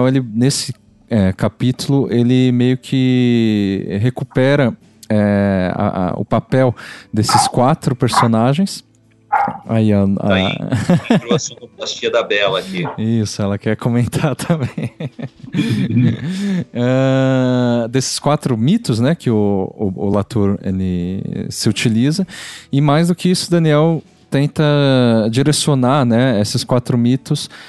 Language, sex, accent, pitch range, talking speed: Portuguese, male, Brazilian, 110-140 Hz, 110 wpm